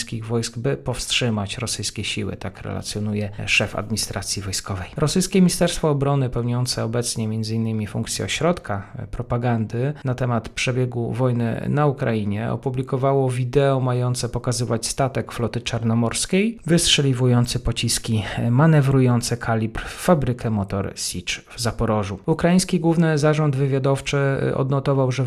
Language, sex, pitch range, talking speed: Polish, male, 115-135 Hz, 115 wpm